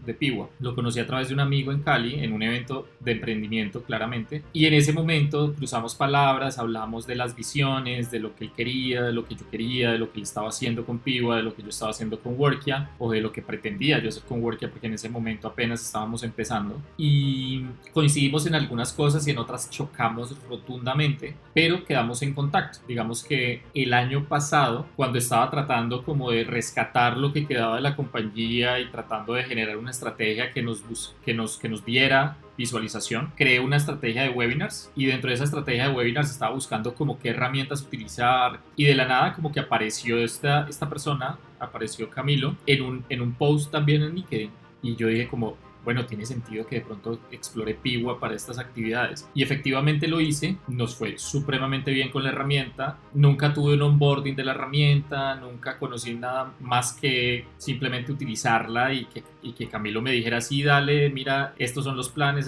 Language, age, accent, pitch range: Spanish, 20-39, Colombian, 115-145 Hz